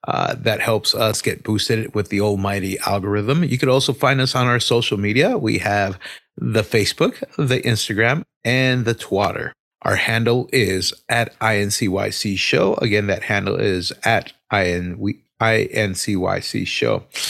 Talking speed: 140 wpm